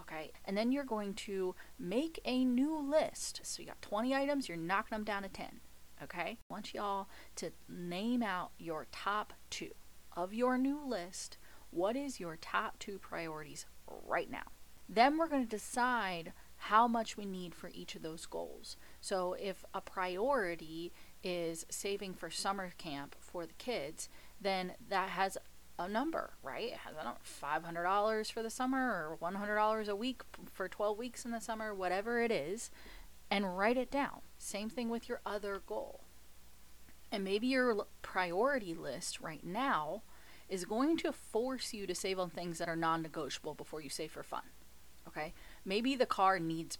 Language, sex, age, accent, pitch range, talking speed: English, female, 30-49, American, 170-230 Hz, 170 wpm